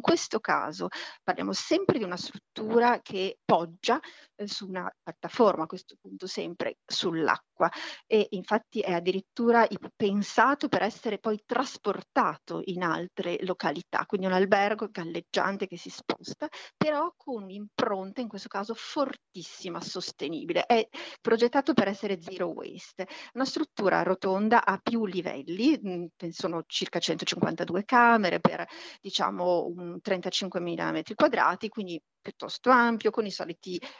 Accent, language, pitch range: native, Italian, 180-230 Hz